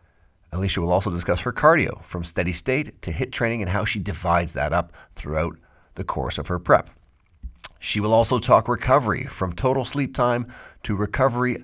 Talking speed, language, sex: 180 wpm, English, male